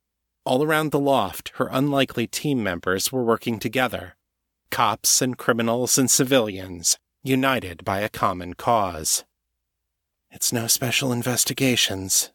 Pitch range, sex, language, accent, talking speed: 85-130 Hz, male, English, American, 120 wpm